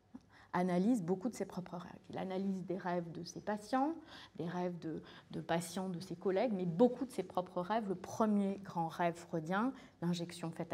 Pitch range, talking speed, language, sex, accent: 175-220 Hz, 190 wpm, French, female, French